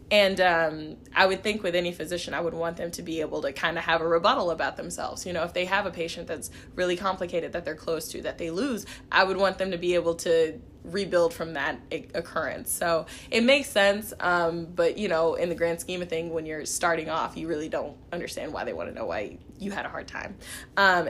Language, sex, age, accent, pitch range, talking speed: English, female, 20-39, American, 165-190 Hz, 245 wpm